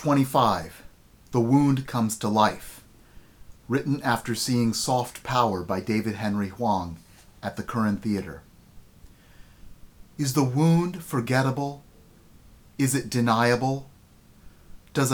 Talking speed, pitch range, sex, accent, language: 105 wpm, 105-135 Hz, male, American, English